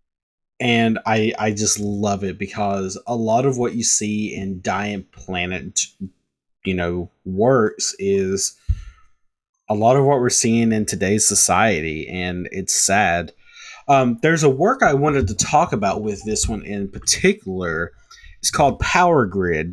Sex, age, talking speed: male, 30-49, 150 wpm